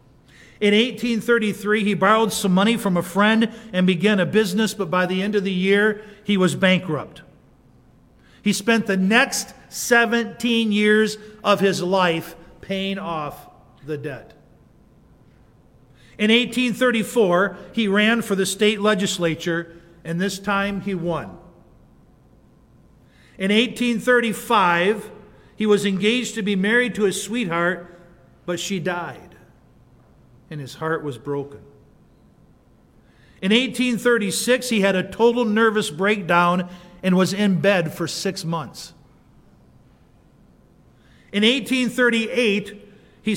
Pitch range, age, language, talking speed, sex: 180-230 Hz, 50-69, English, 120 wpm, male